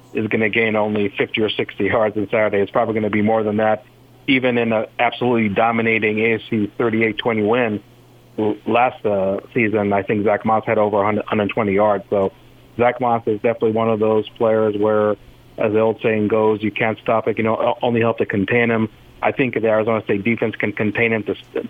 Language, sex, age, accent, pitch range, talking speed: English, male, 40-59, American, 105-115 Hz, 205 wpm